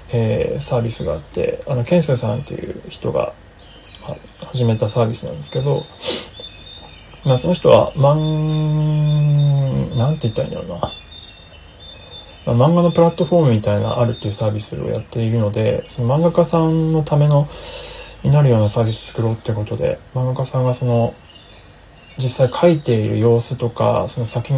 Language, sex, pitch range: Japanese, male, 110-145 Hz